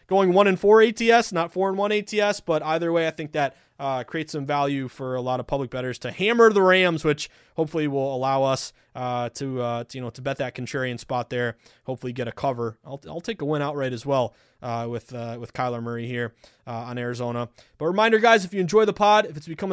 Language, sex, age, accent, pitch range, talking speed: English, male, 20-39, American, 130-165 Hz, 245 wpm